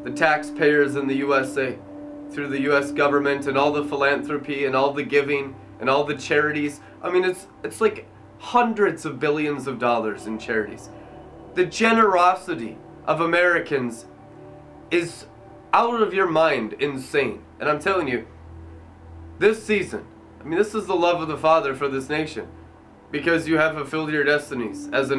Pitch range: 135-170 Hz